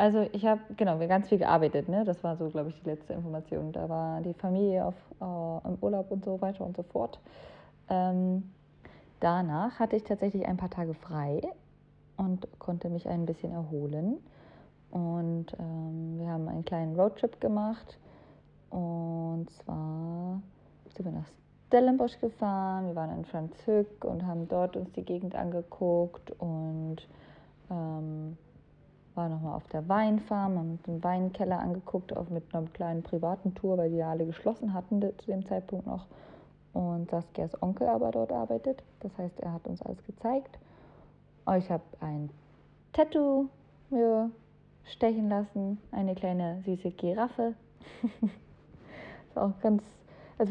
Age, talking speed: 30-49, 150 wpm